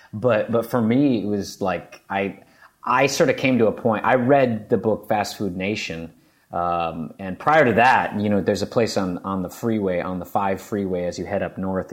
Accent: American